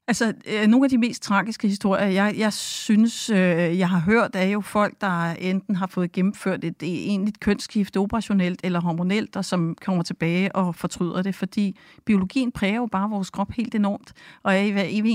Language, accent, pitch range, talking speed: Danish, native, 185-215 Hz, 195 wpm